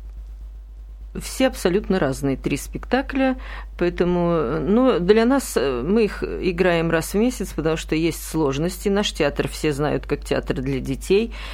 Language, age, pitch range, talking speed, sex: Russian, 40-59, 140-185 Hz, 140 wpm, female